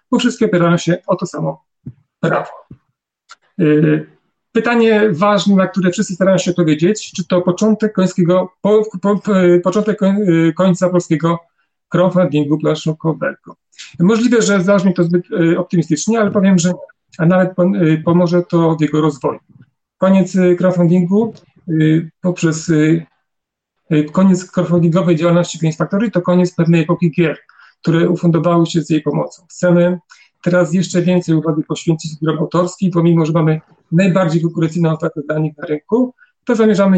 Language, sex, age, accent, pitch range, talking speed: Polish, male, 40-59, native, 160-185 Hz, 135 wpm